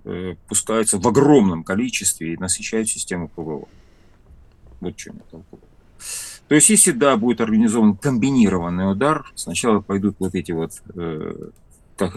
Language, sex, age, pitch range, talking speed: Russian, male, 40-59, 85-110 Hz, 120 wpm